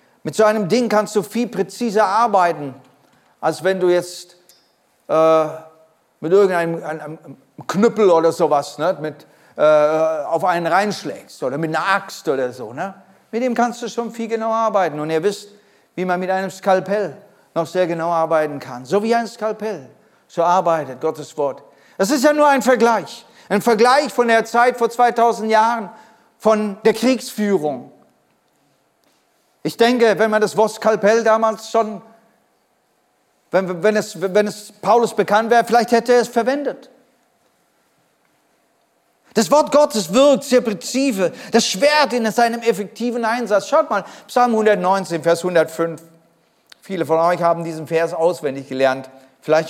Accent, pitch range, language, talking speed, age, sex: German, 165-230 Hz, German, 150 wpm, 40-59, male